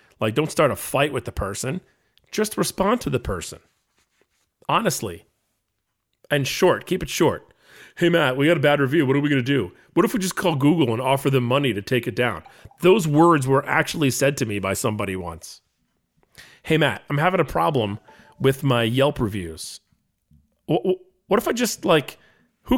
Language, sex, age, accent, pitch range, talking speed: English, male, 40-59, American, 115-155 Hz, 190 wpm